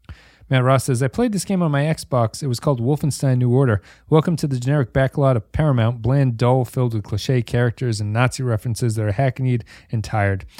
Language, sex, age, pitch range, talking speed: English, male, 30-49, 115-140 Hz, 210 wpm